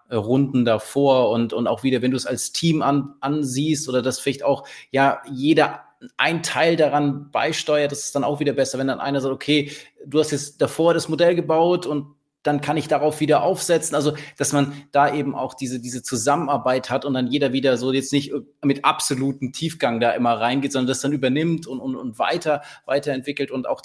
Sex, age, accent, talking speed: male, 20-39, German, 205 wpm